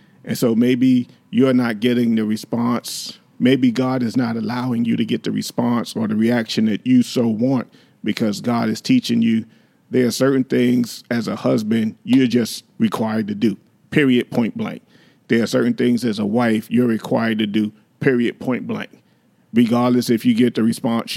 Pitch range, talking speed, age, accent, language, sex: 115-130 Hz, 185 wpm, 40-59, American, English, male